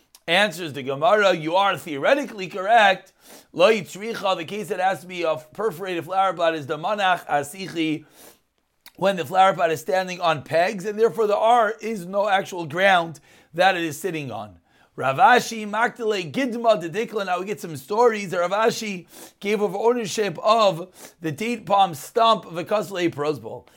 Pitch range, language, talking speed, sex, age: 180-225 Hz, English, 160 wpm, male, 40-59